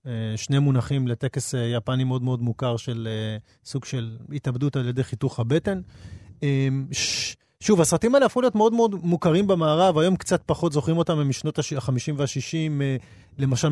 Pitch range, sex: 125-165 Hz, male